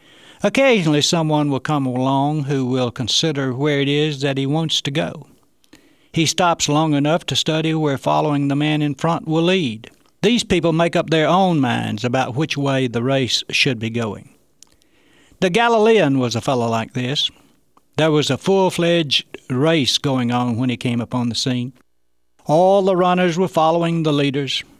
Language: English